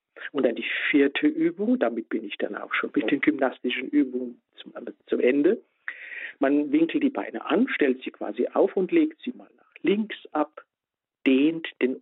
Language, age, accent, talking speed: German, 50-69, German, 175 wpm